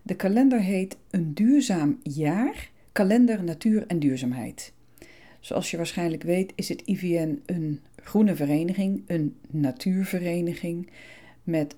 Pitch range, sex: 145-195 Hz, female